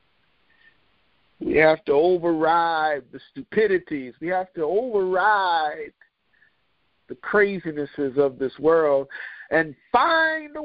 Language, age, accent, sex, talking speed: English, 50-69, American, male, 100 wpm